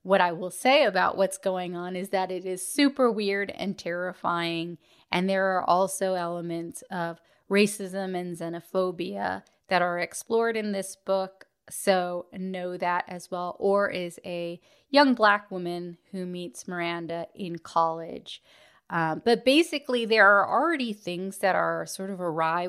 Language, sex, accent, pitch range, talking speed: English, female, American, 175-200 Hz, 155 wpm